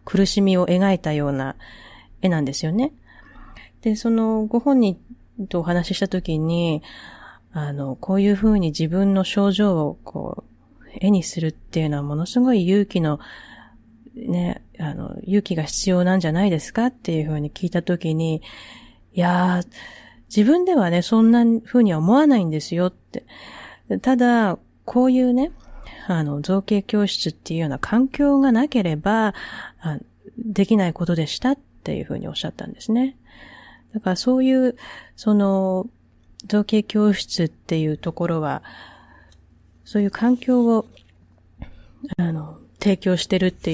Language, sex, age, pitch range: Japanese, female, 30-49, 160-215 Hz